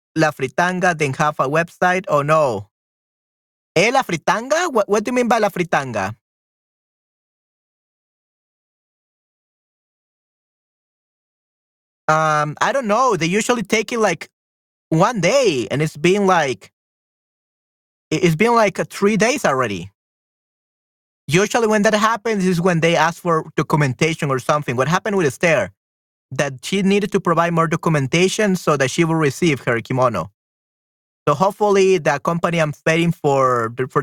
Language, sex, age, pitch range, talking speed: Spanish, male, 30-49, 140-195 Hz, 140 wpm